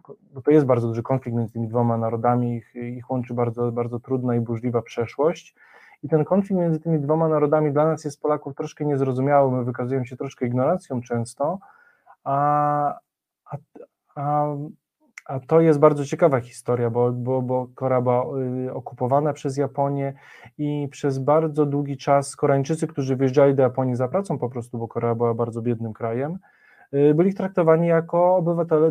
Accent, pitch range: native, 125-150 Hz